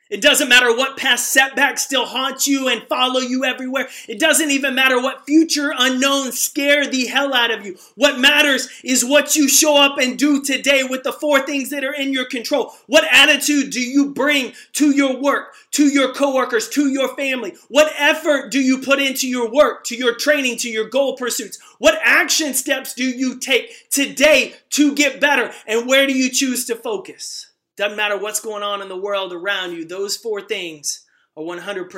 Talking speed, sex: 195 wpm, male